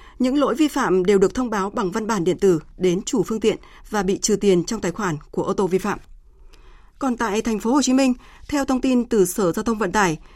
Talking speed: 260 wpm